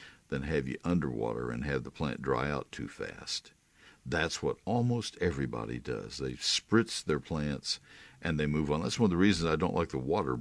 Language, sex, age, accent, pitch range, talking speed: English, male, 60-79, American, 70-95 Hz, 200 wpm